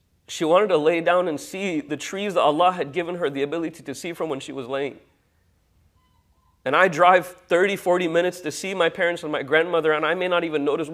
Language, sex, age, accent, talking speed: English, male, 30-49, American, 225 wpm